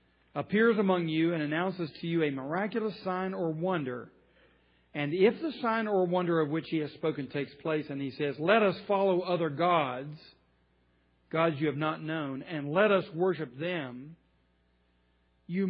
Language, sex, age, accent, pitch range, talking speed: English, male, 40-59, American, 130-195 Hz, 170 wpm